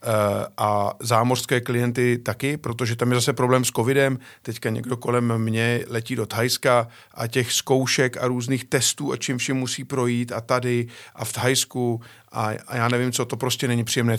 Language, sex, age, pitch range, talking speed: Czech, male, 50-69, 115-145 Hz, 180 wpm